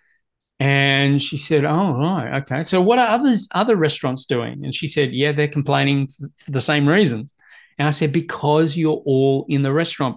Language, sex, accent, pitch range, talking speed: English, male, Australian, 135-175 Hz, 185 wpm